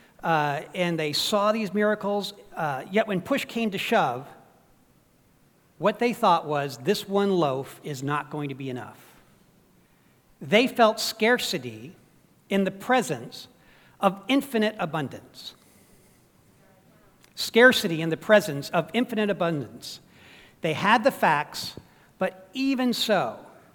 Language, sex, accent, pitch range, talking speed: English, male, American, 165-220 Hz, 125 wpm